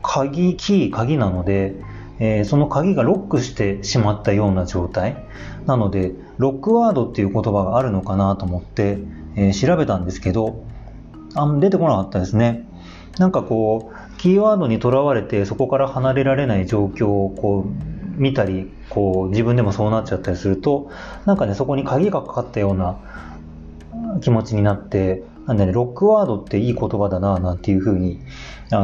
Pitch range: 100-145 Hz